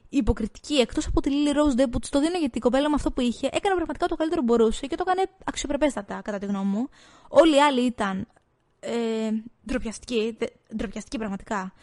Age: 20-39